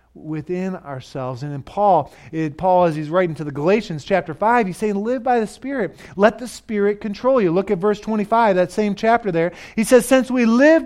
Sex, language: male, English